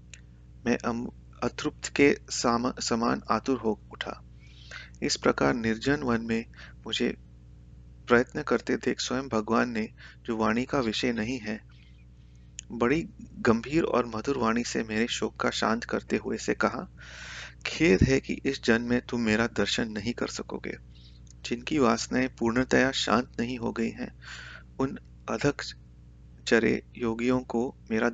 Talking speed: 135 wpm